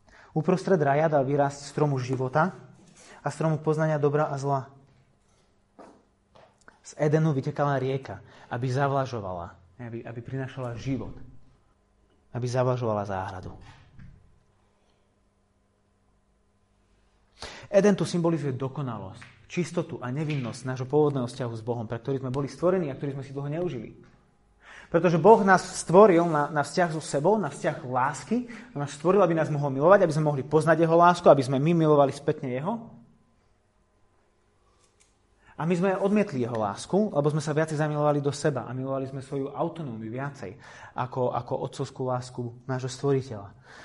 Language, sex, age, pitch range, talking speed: Slovak, male, 30-49, 120-175 Hz, 140 wpm